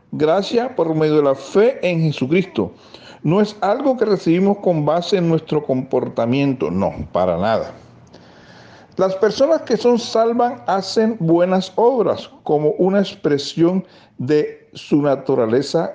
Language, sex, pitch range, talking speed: Spanish, male, 130-200 Hz, 130 wpm